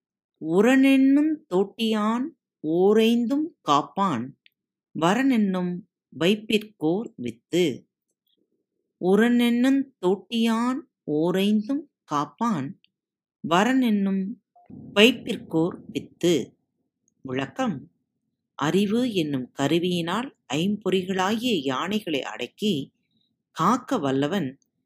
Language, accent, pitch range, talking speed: Tamil, native, 160-235 Hz, 65 wpm